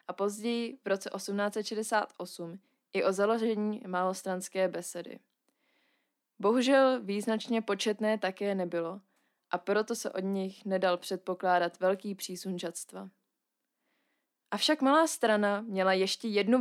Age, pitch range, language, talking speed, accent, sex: 20-39, 190-245 Hz, Czech, 110 wpm, native, female